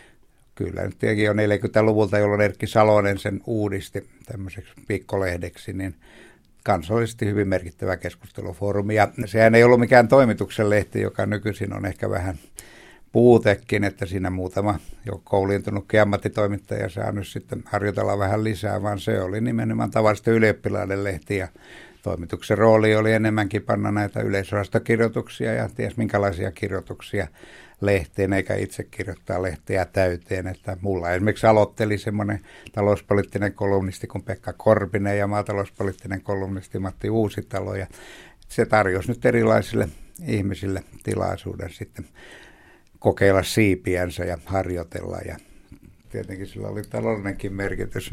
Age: 60-79